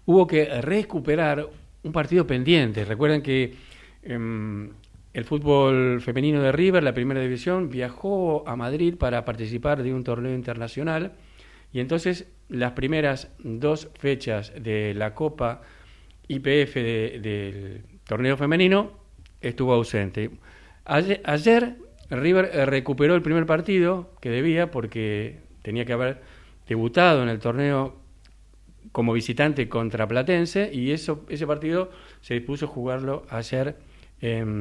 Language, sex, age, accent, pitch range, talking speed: Spanish, male, 40-59, Spanish, 115-165 Hz, 125 wpm